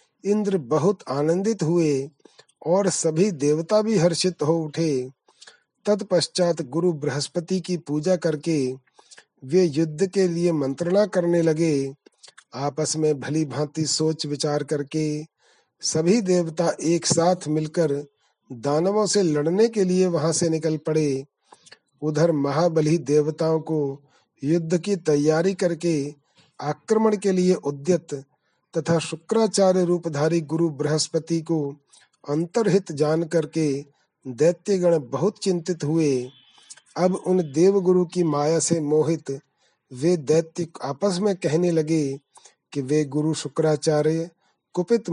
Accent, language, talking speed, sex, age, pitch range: native, Hindi, 115 wpm, male, 40-59, 150-180 Hz